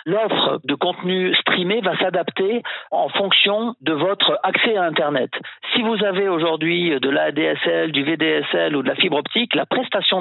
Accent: French